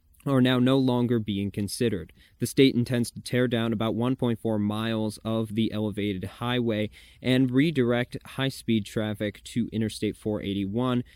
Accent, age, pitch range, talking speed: American, 20-39, 105-125 Hz, 140 wpm